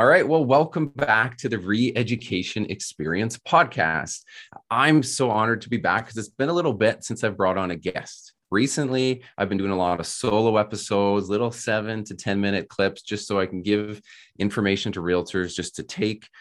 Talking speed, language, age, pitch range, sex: 195 wpm, English, 30-49, 90-115 Hz, male